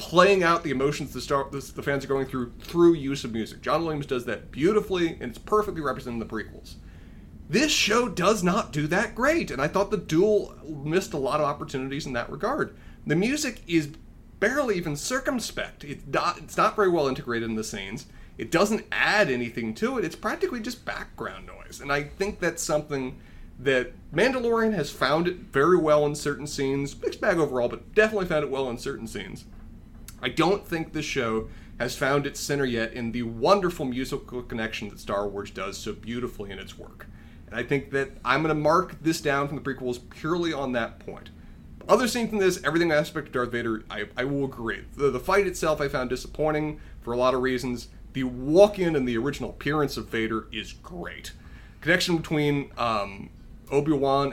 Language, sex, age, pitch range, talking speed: English, male, 30-49, 120-170 Hz, 200 wpm